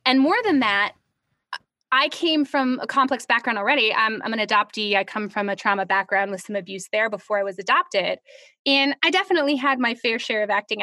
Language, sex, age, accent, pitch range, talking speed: English, female, 20-39, American, 220-300 Hz, 210 wpm